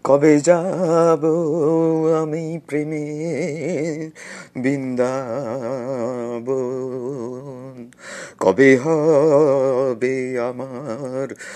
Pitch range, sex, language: 130-170 Hz, male, Bengali